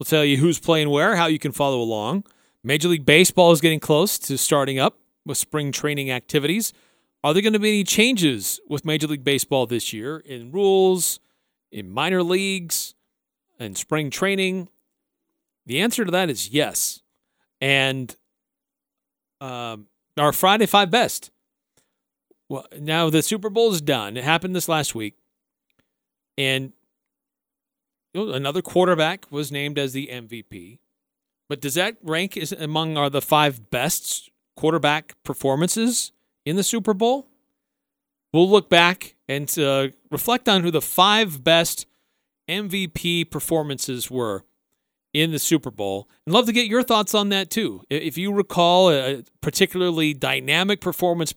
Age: 40-59